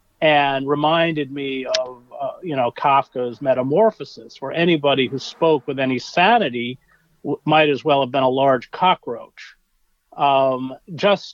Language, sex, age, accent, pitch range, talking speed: English, male, 40-59, American, 130-160 Hz, 145 wpm